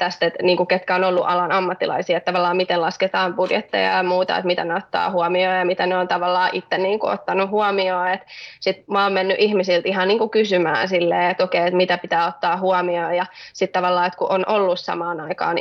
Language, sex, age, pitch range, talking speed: Finnish, female, 20-39, 175-195 Hz, 210 wpm